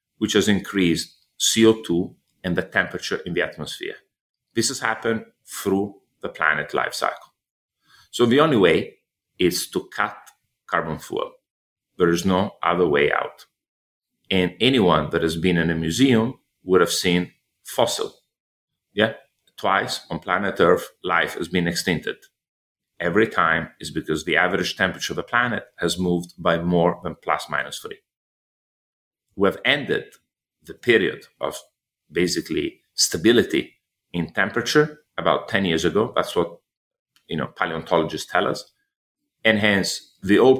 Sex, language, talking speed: male, English, 145 wpm